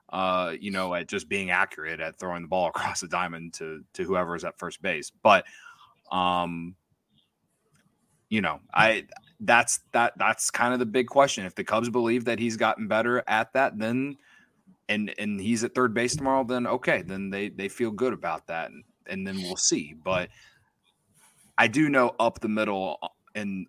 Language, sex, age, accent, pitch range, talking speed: English, male, 20-39, American, 95-115 Hz, 185 wpm